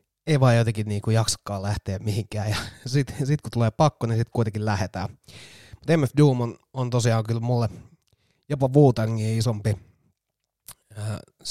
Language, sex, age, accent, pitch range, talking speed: Finnish, male, 30-49, native, 110-125 Hz, 155 wpm